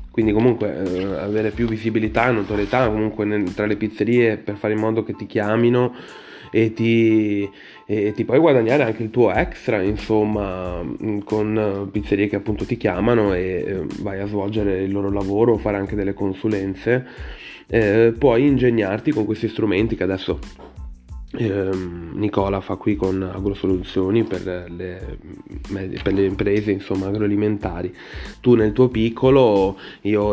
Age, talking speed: 20-39, 140 wpm